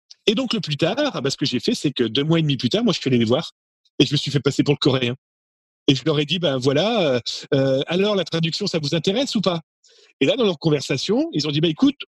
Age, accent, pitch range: 40-59, French, 145-195 Hz